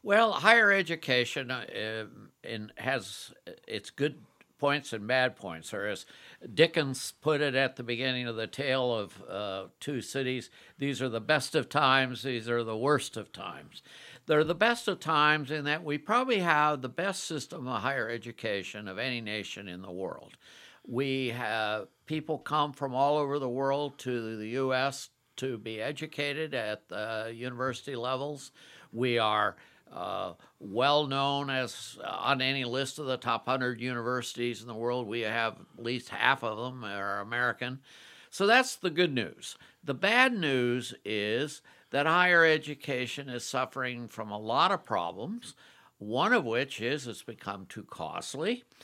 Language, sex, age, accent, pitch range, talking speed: English, male, 60-79, American, 120-150 Hz, 160 wpm